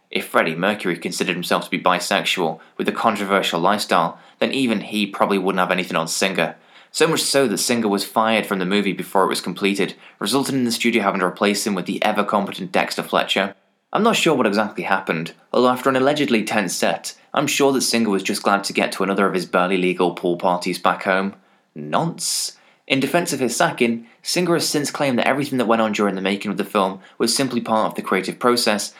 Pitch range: 95-130 Hz